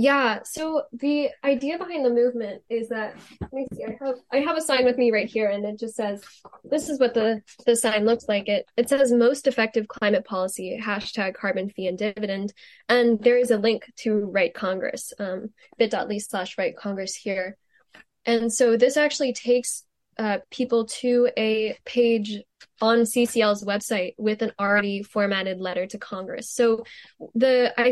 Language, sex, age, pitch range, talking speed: English, female, 10-29, 205-240 Hz, 180 wpm